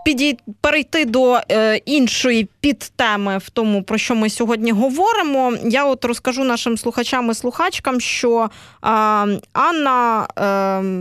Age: 20-39